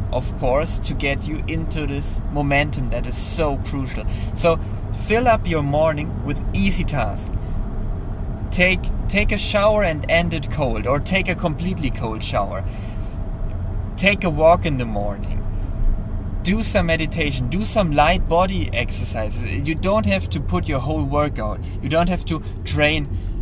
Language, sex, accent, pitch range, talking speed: English, male, German, 95-135 Hz, 155 wpm